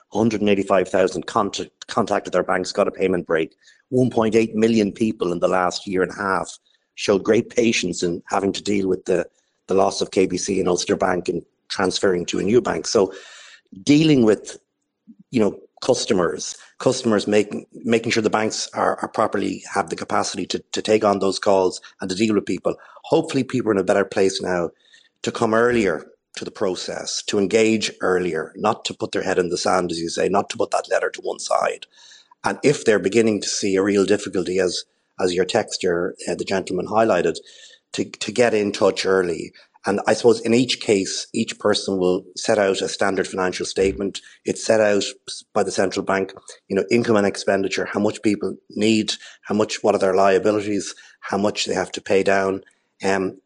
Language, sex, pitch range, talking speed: English, male, 95-115 Hz, 195 wpm